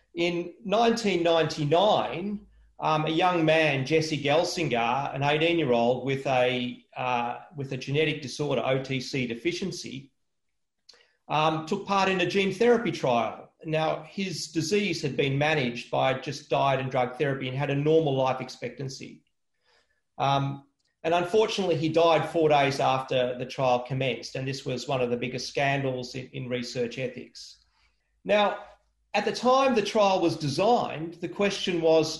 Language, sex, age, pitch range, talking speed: English, male, 40-59, 130-170 Hz, 140 wpm